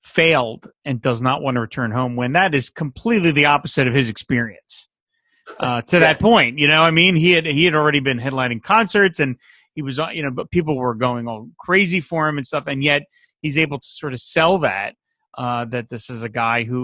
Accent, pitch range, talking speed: American, 125-155 Hz, 230 wpm